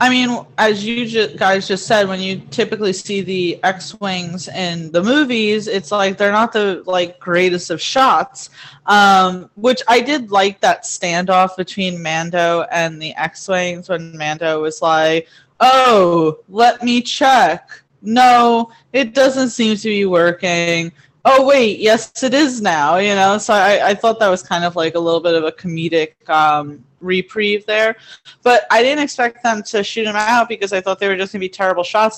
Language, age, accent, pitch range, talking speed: English, 20-39, American, 170-220 Hz, 185 wpm